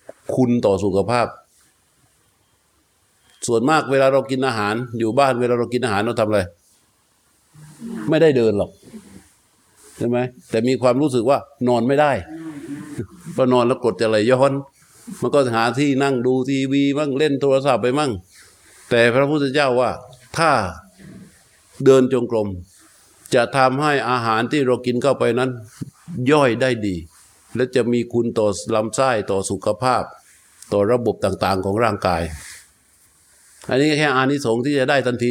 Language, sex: Thai, male